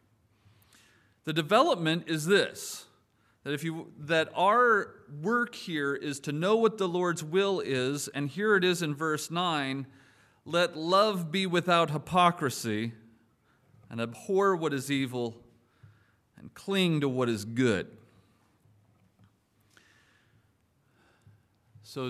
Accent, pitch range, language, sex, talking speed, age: American, 105-150 Hz, English, male, 115 wpm, 40-59